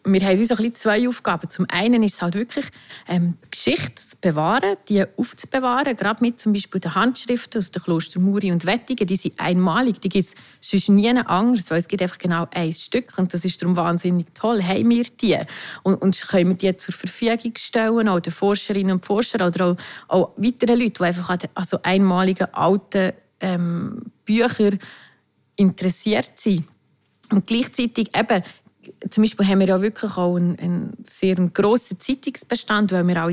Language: German